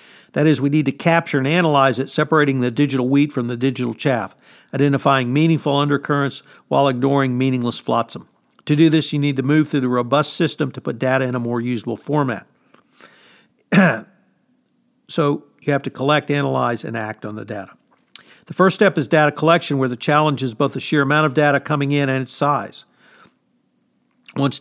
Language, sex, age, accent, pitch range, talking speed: English, male, 50-69, American, 130-160 Hz, 185 wpm